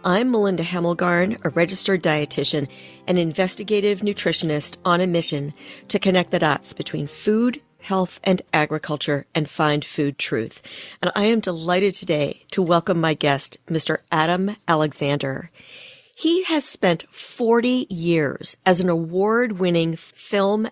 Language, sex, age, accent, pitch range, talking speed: English, female, 40-59, American, 155-200 Hz, 135 wpm